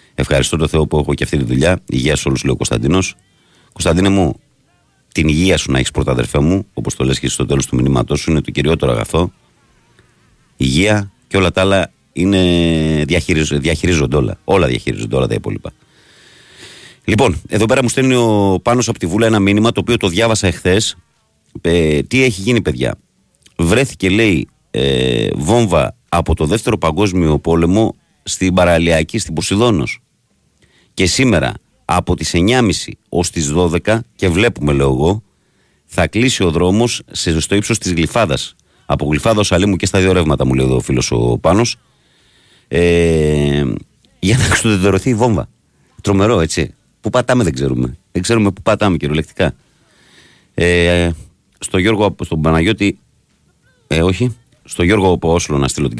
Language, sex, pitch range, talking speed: Greek, male, 75-105 Hz, 160 wpm